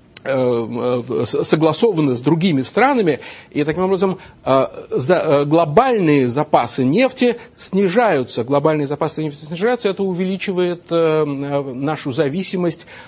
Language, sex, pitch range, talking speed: Russian, male, 135-185 Hz, 90 wpm